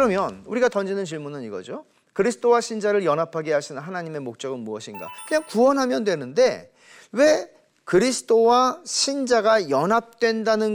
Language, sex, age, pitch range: Korean, male, 40-59, 155-230 Hz